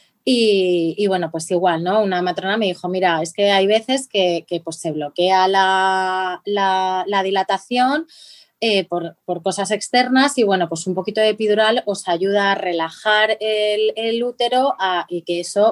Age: 20-39